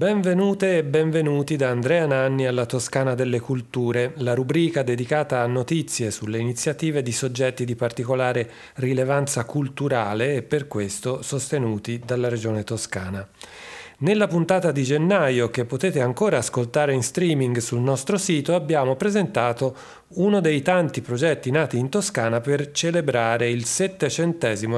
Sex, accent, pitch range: male, native, 120-160 Hz